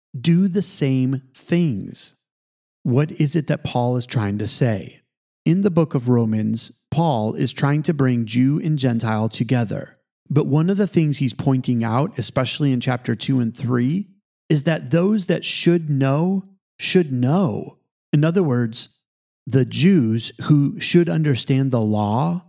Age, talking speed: 40-59, 155 wpm